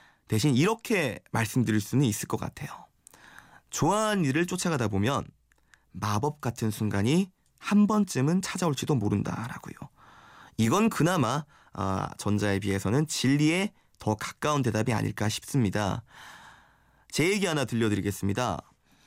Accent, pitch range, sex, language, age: native, 105-150 Hz, male, Korean, 20-39